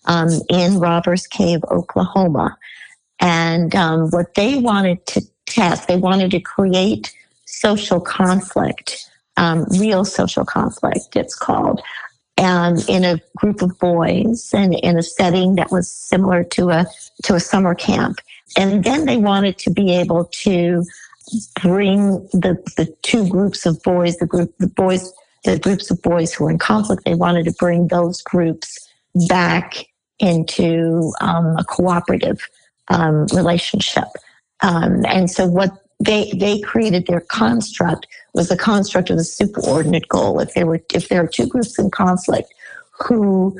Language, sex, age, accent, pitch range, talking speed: English, female, 50-69, American, 170-200 Hz, 150 wpm